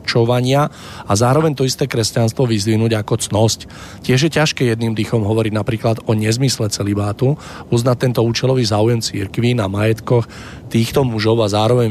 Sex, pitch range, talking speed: male, 110-125 Hz, 150 wpm